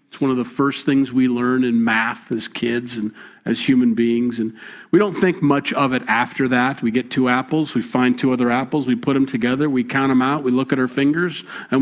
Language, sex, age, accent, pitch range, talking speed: English, male, 50-69, American, 115-140 Hz, 245 wpm